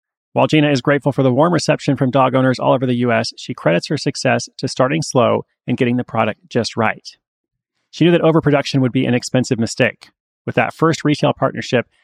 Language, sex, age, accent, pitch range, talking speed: English, male, 30-49, American, 120-150 Hz, 210 wpm